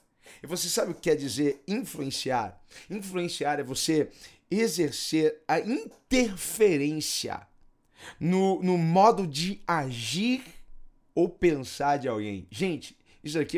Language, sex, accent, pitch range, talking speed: Portuguese, male, Brazilian, 120-170 Hz, 115 wpm